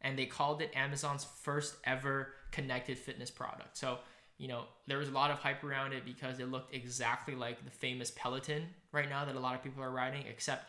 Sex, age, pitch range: male, 10-29, 125-140 Hz